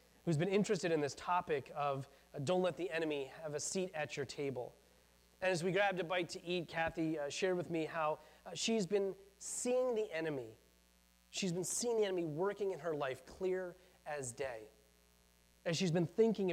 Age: 30-49